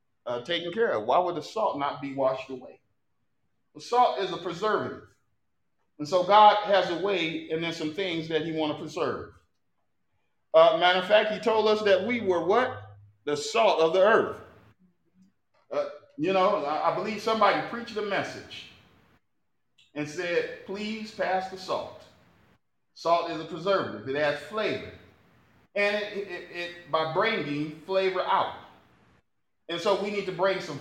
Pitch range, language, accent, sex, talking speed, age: 125-180 Hz, English, American, male, 170 wpm, 40-59